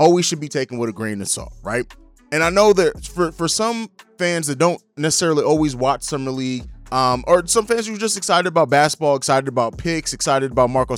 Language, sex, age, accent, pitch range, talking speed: English, male, 20-39, American, 135-180 Hz, 225 wpm